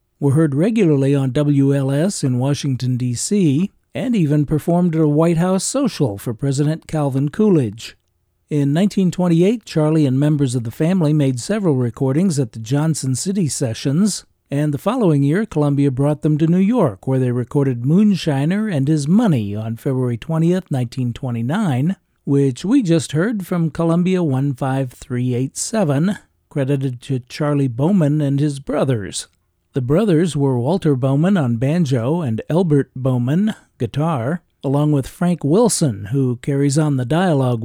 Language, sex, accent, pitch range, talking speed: English, male, American, 135-170 Hz, 145 wpm